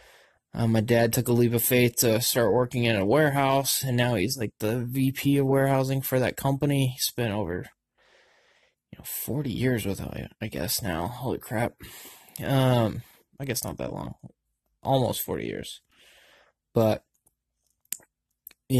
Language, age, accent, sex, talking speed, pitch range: English, 20-39, American, male, 160 wpm, 115-135 Hz